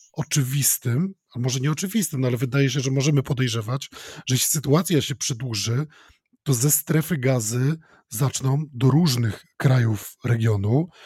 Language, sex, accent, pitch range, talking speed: Polish, male, native, 125-155 Hz, 130 wpm